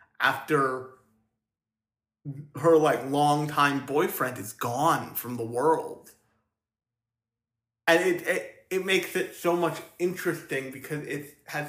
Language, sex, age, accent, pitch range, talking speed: English, male, 30-49, American, 115-155 Hz, 120 wpm